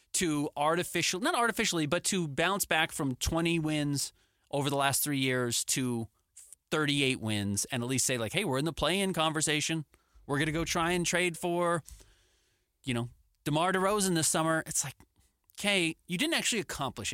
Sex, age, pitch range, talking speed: male, 30-49, 120-170 Hz, 175 wpm